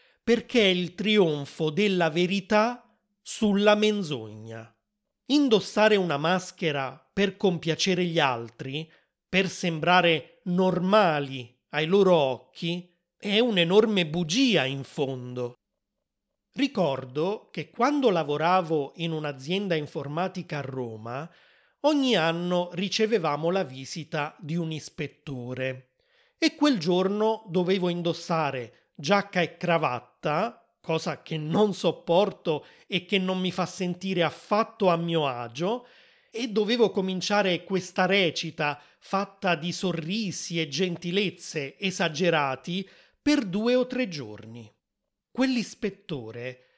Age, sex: 30-49, male